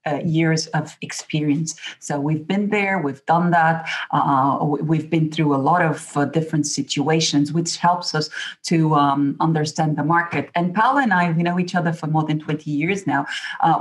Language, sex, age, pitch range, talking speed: English, female, 40-59, 155-185 Hz, 190 wpm